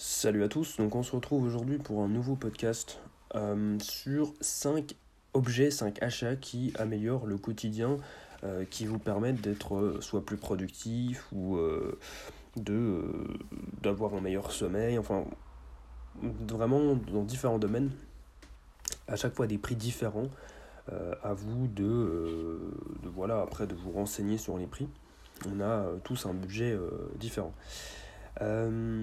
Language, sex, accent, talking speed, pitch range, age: French, male, French, 145 wpm, 100-125 Hz, 40-59